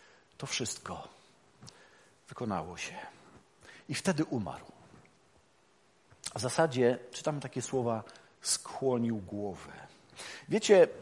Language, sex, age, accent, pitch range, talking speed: Polish, male, 40-59, native, 110-145 Hz, 80 wpm